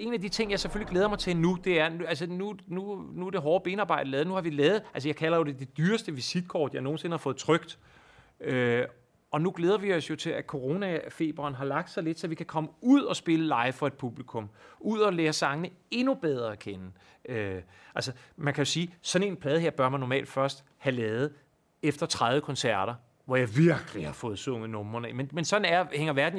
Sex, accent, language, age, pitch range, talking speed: male, native, Danish, 30-49, 125-175 Hz, 235 wpm